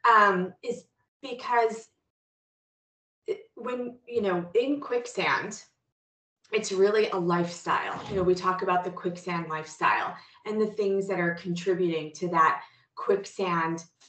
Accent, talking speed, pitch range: American, 125 wpm, 175-210 Hz